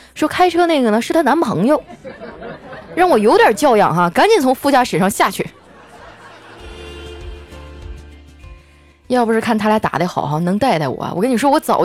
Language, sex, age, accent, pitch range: Chinese, female, 20-39, native, 185-300 Hz